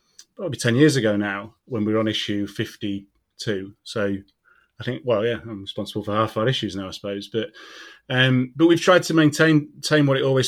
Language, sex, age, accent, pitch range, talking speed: English, male, 30-49, British, 110-125 Hz, 210 wpm